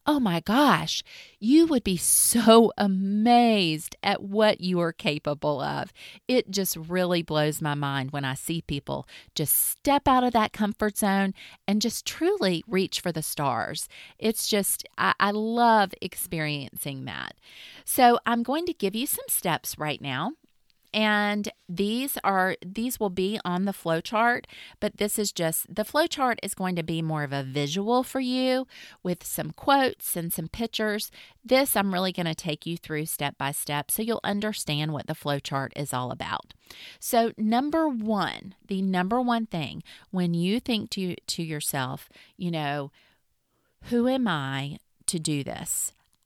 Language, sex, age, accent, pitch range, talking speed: English, female, 30-49, American, 155-225 Hz, 165 wpm